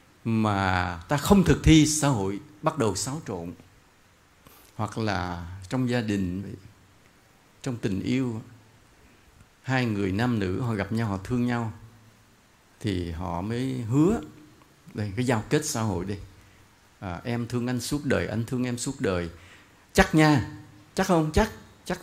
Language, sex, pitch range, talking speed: English, male, 105-145 Hz, 155 wpm